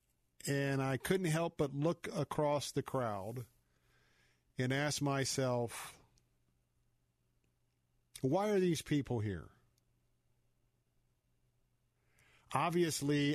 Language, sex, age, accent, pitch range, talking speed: English, male, 50-69, American, 110-150 Hz, 80 wpm